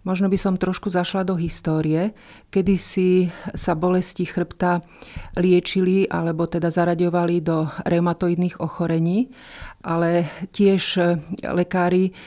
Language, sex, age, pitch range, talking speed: Slovak, female, 40-59, 170-185 Hz, 110 wpm